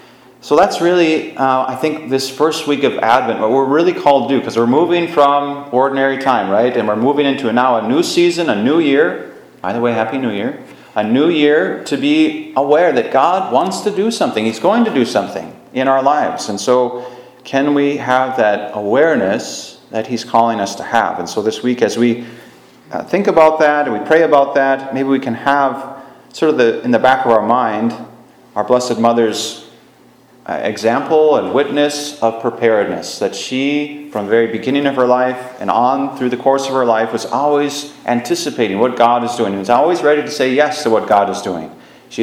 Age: 30-49